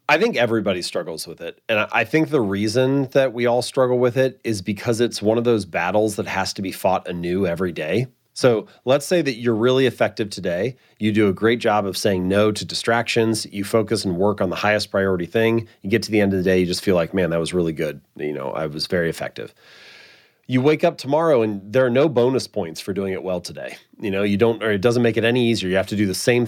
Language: English